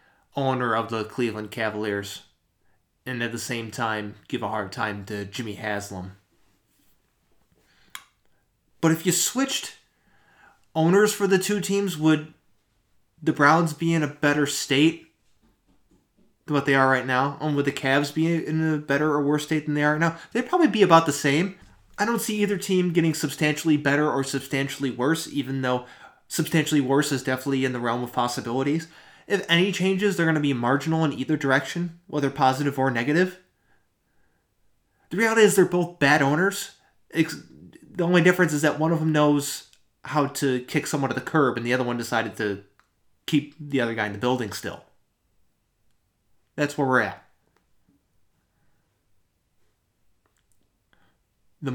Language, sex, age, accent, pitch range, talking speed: English, male, 20-39, American, 115-160 Hz, 160 wpm